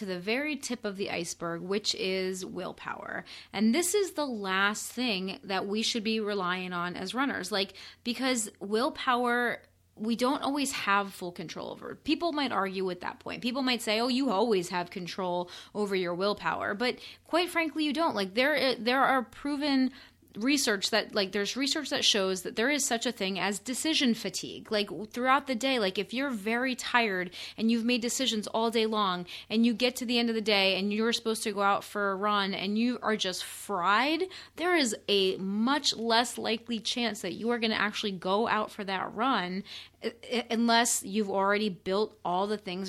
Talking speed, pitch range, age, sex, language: 195 wpm, 195-245 Hz, 20-39, female, English